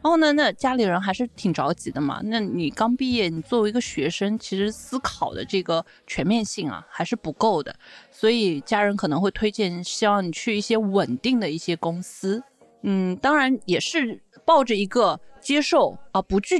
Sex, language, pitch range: female, Chinese, 185-255 Hz